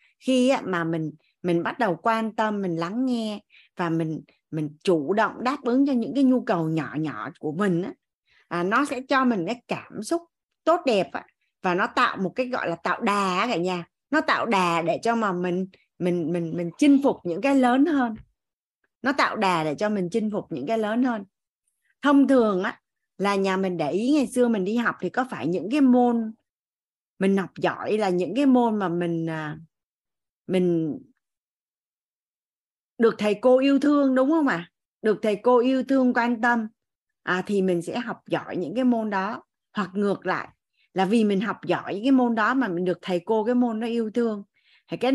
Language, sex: Vietnamese, female